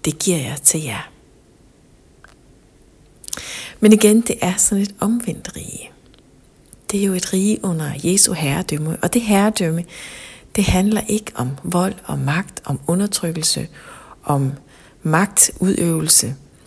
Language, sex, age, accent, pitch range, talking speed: Danish, female, 60-79, native, 150-190 Hz, 125 wpm